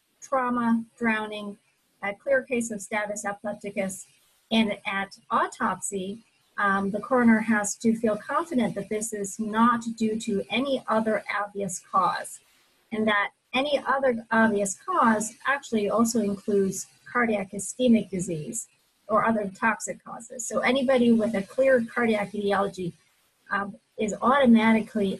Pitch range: 200-230 Hz